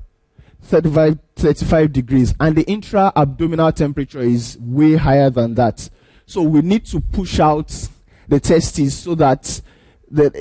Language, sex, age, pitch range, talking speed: English, male, 20-39, 125-160 Hz, 135 wpm